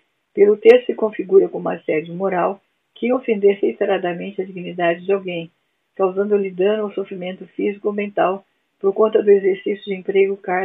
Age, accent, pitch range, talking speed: 50-69, Brazilian, 180-205 Hz, 150 wpm